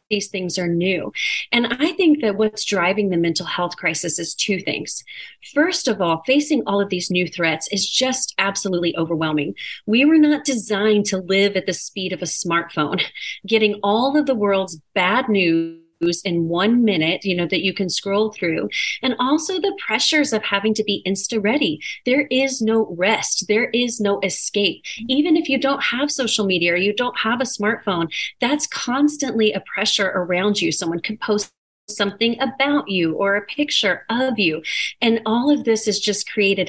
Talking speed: 185 wpm